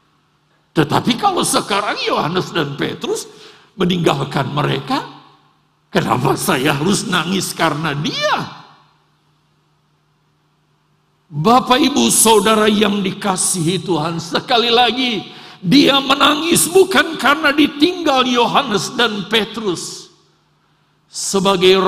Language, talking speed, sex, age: Indonesian, 85 wpm, male, 50-69